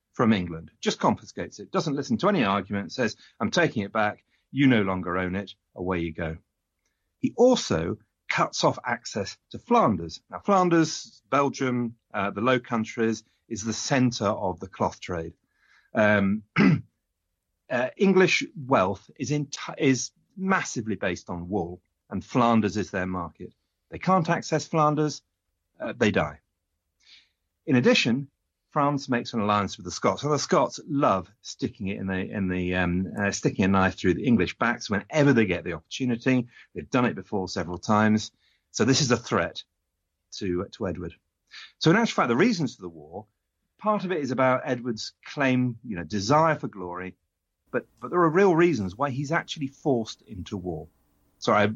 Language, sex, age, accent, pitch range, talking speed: English, male, 40-59, British, 90-140 Hz, 175 wpm